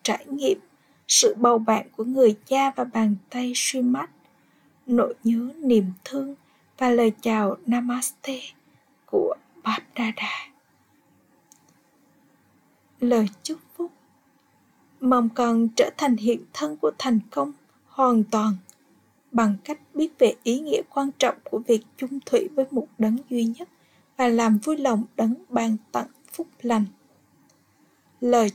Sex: female